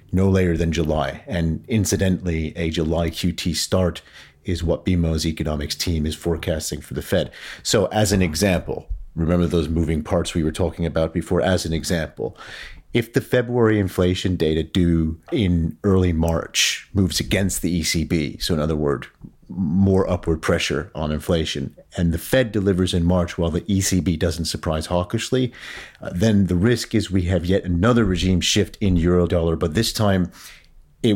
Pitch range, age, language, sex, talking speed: 85-100 Hz, 40-59, English, male, 170 wpm